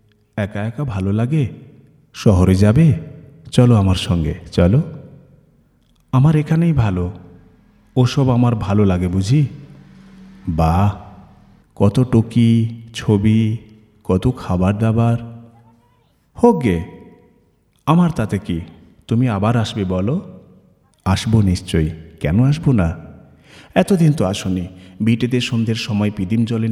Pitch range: 90-120 Hz